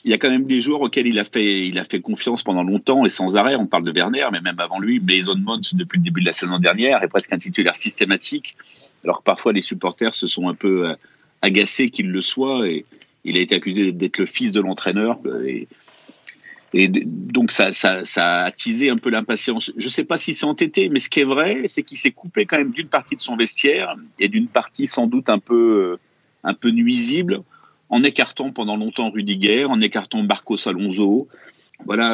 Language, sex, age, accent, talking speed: French, male, 40-59, French, 220 wpm